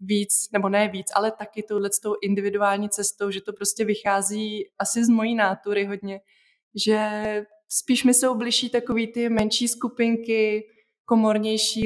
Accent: native